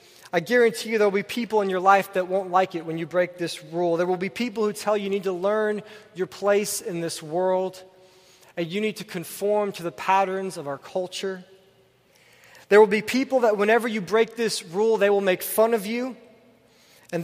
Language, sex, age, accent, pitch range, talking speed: English, male, 20-39, American, 175-220 Hz, 220 wpm